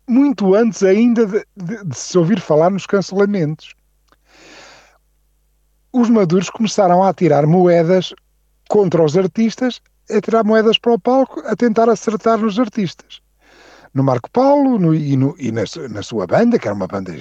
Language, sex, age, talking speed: Portuguese, male, 50-69, 165 wpm